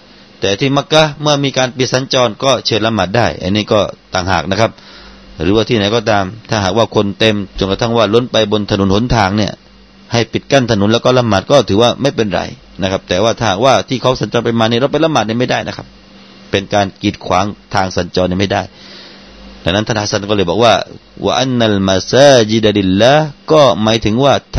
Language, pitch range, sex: Thai, 105-140 Hz, male